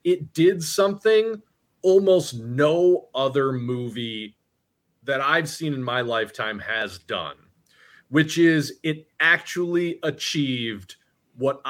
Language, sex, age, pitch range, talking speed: English, male, 30-49, 135-170 Hz, 110 wpm